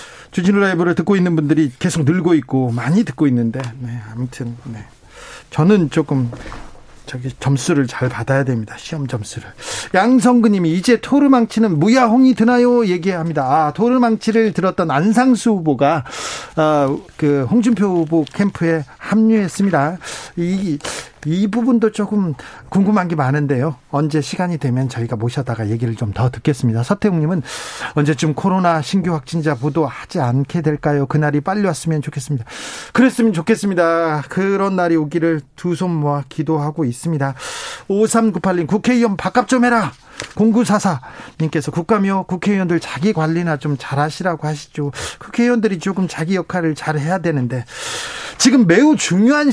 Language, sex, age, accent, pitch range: Korean, male, 40-59, native, 145-200 Hz